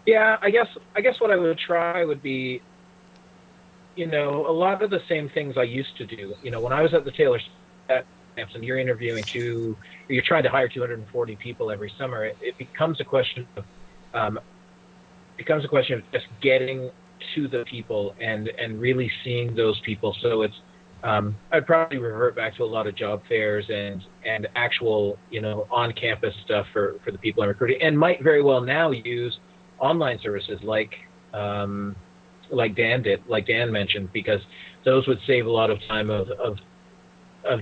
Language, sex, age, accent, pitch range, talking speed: English, male, 30-49, American, 105-155 Hz, 190 wpm